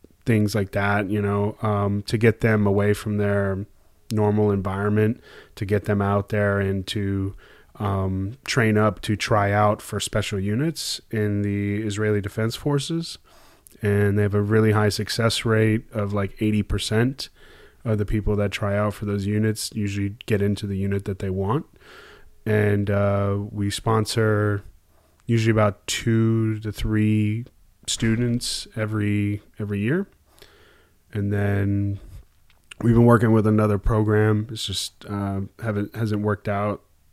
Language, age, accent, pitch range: English, 20-39, American, 100-110 Hz